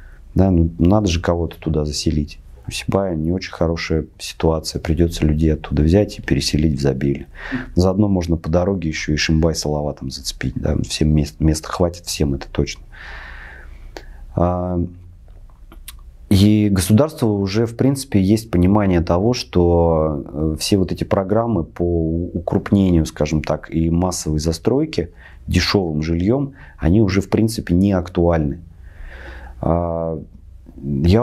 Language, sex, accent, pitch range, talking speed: Russian, male, native, 80-95 Hz, 125 wpm